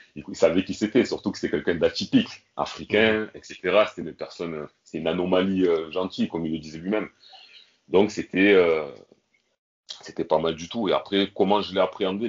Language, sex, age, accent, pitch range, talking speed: French, male, 30-49, French, 85-105 Hz, 185 wpm